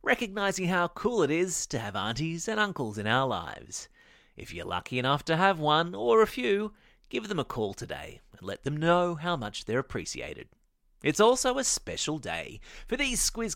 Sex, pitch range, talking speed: male, 125-185 Hz, 195 wpm